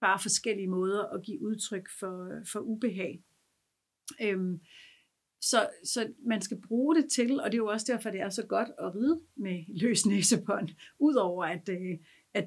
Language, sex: Danish, female